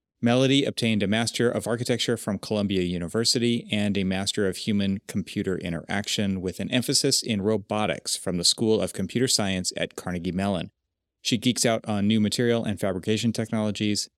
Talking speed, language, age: 160 wpm, English, 30-49